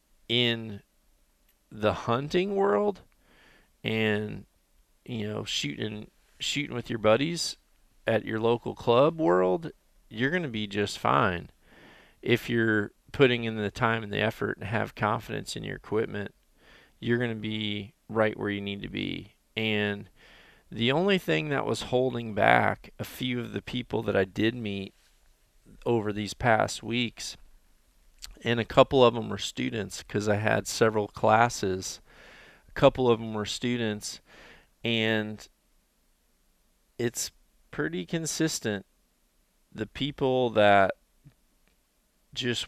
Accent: American